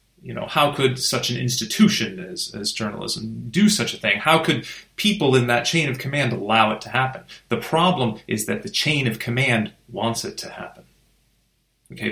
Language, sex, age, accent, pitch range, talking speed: English, male, 30-49, American, 115-150 Hz, 195 wpm